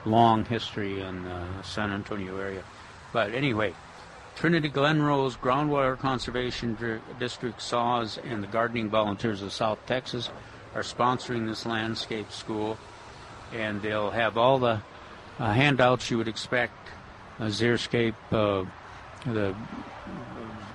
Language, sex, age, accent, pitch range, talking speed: English, male, 60-79, American, 105-125 Hz, 120 wpm